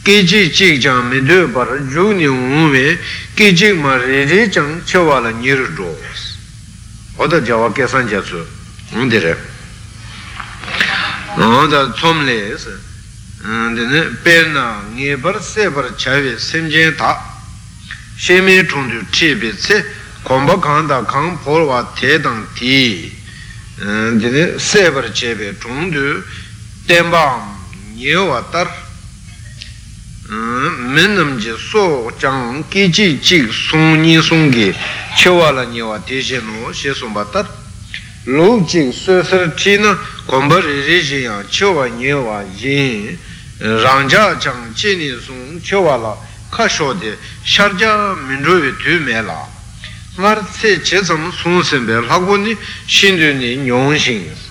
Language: Italian